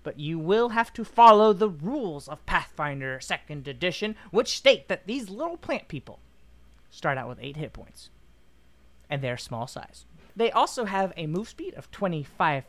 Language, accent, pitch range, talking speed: English, American, 150-235 Hz, 175 wpm